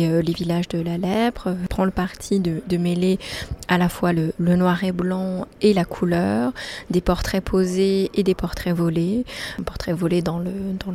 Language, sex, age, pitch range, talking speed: French, female, 20-39, 170-195 Hz, 185 wpm